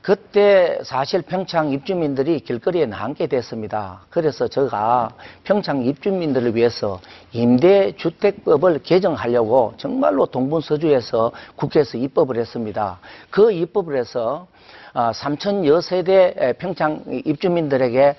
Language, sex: Korean, male